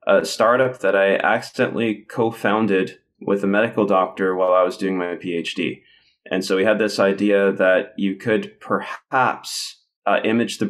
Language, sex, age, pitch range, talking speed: English, male, 20-39, 95-105 Hz, 165 wpm